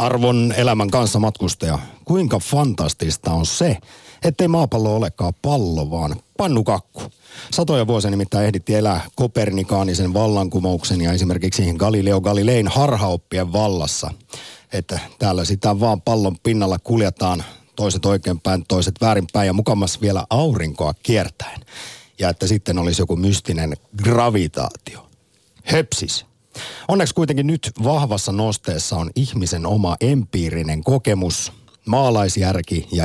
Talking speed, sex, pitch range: 115 wpm, male, 90-125 Hz